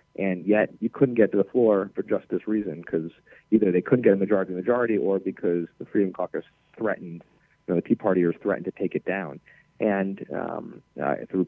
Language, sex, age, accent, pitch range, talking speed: English, male, 30-49, American, 95-125 Hz, 210 wpm